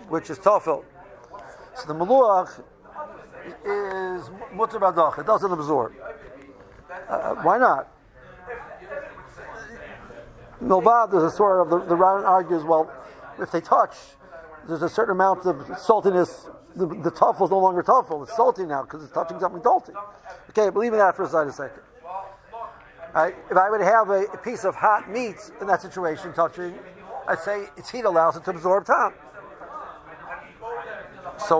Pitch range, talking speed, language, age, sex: 175-220 Hz, 145 wpm, English, 50-69, male